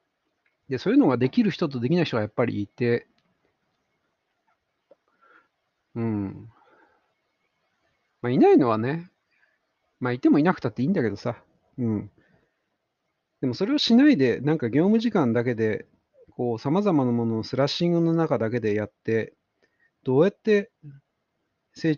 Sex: male